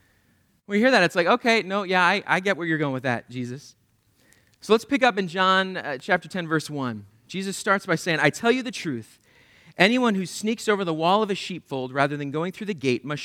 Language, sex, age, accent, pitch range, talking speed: English, male, 40-59, American, 120-195 Hz, 240 wpm